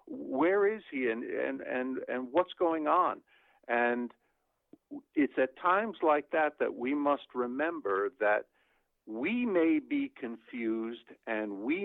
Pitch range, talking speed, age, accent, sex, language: 115-180 Hz, 135 wpm, 50-69, American, male, English